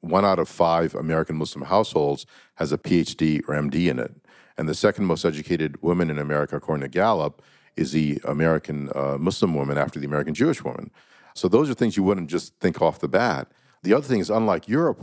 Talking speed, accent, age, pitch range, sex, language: 210 wpm, American, 50-69, 75-95 Hz, male, English